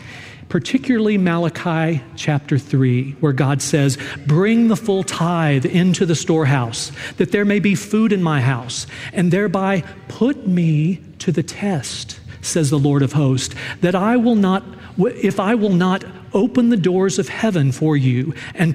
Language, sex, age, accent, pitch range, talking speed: English, male, 40-59, American, 135-190 Hz, 160 wpm